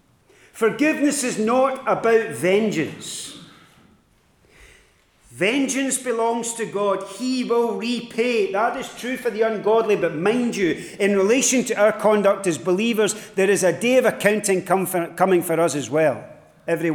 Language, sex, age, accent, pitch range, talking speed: English, male, 40-59, British, 195-250 Hz, 140 wpm